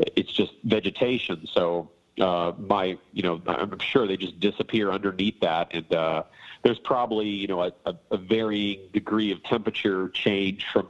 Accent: American